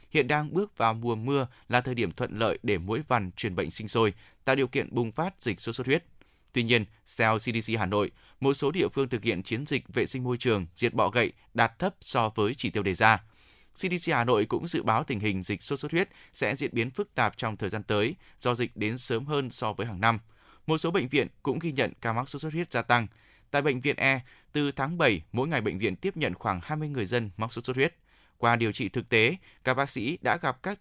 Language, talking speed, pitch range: Vietnamese, 255 wpm, 105-135 Hz